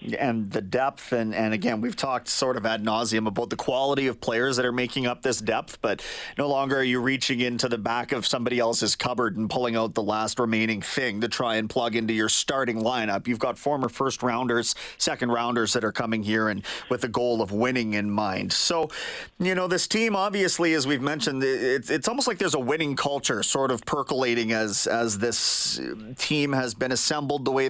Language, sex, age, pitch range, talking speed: English, male, 30-49, 115-140 Hz, 210 wpm